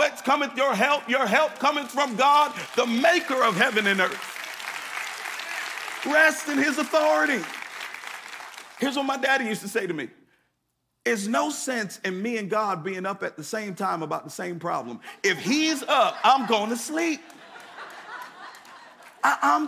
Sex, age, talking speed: male, 50-69, 160 wpm